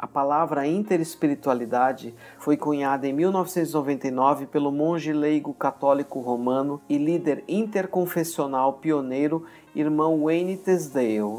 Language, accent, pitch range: Portuguese, Brazilian, 135-165 Hz